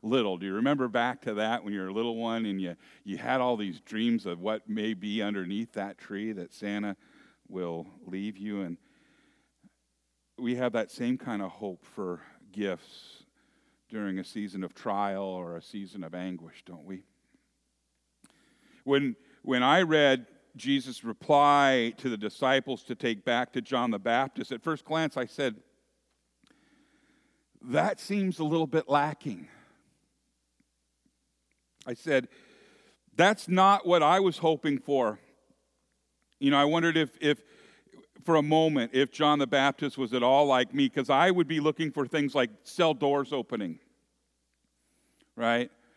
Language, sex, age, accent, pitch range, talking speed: English, male, 50-69, American, 100-155 Hz, 155 wpm